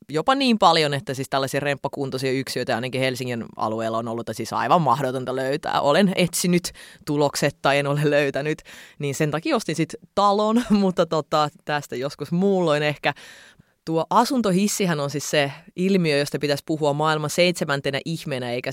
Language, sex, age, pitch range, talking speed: Finnish, female, 20-39, 140-175 Hz, 155 wpm